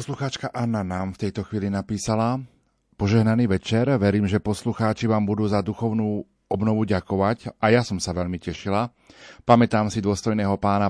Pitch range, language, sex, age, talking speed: 100-120 Hz, Slovak, male, 40-59, 155 wpm